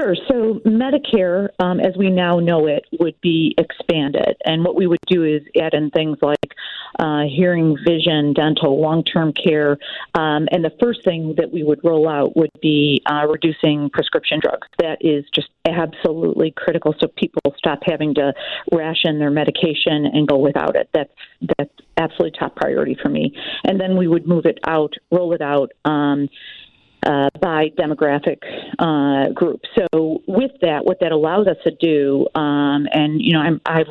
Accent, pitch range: American, 150-175 Hz